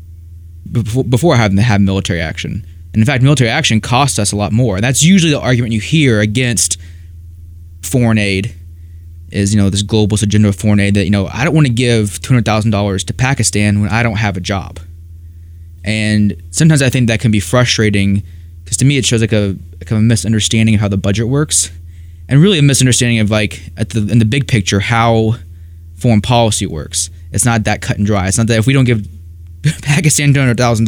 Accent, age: American, 20-39